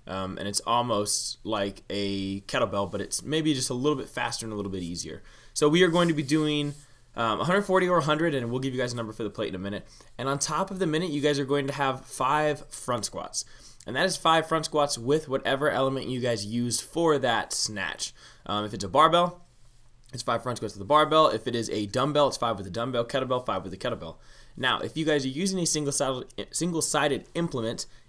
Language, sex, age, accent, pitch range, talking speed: English, male, 20-39, American, 110-145 Hz, 235 wpm